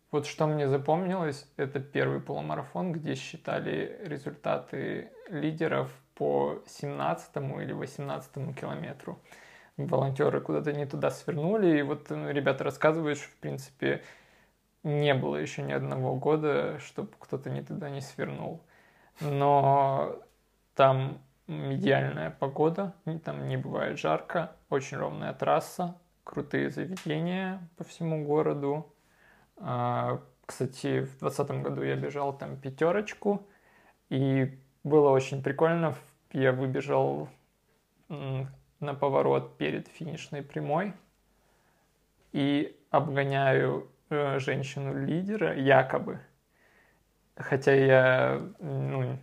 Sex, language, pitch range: male, Russian, 135-155 Hz